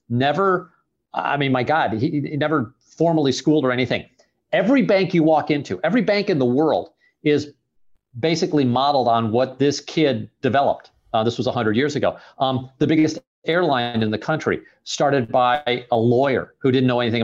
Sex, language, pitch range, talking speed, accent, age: male, English, 125-170 Hz, 180 wpm, American, 50-69